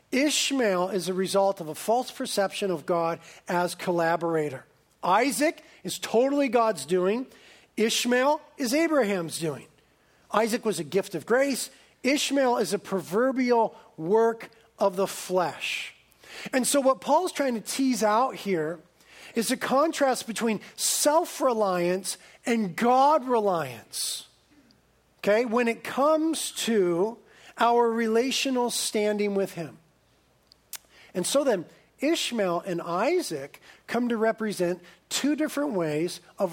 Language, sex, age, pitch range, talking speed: English, male, 40-59, 180-245 Hz, 120 wpm